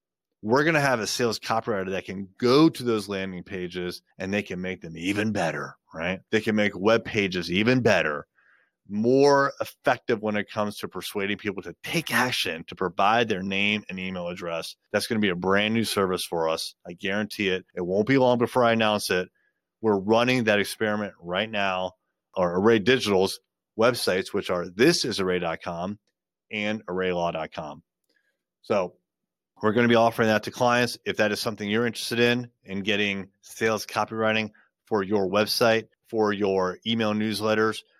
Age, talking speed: 30-49, 170 wpm